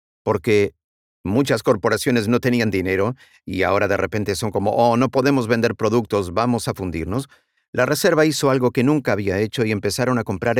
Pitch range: 105-135 Hz